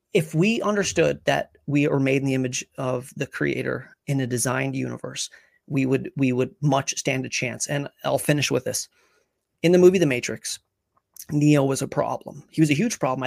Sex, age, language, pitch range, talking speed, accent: male, 30-49, English, 130-155 Hz, 200 wpm, American